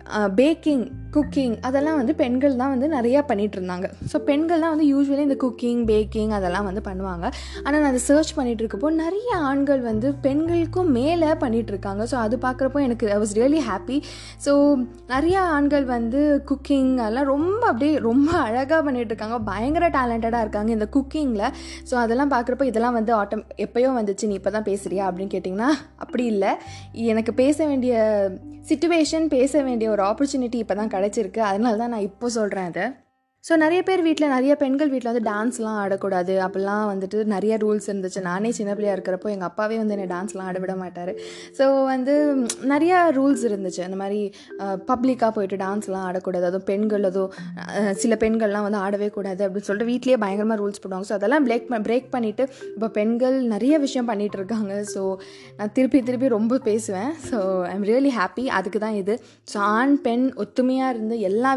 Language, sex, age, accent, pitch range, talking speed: Tamil, female, 20-39, native, 200-270 Hz, 165 wpm